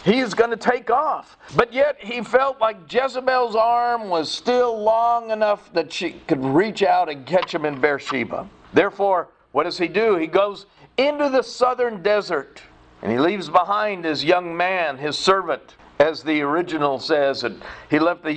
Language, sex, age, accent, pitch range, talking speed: English, male, 50-69, American, 165-220 Hz, 175 wpm